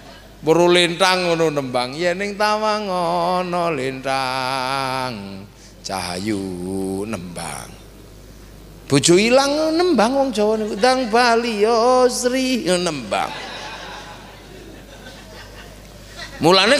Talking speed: 85 wpm